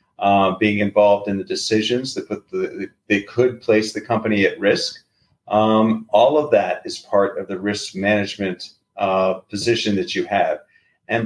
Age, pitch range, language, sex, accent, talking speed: 40-59, 100-120 Hz, English, male, American, 170 wpm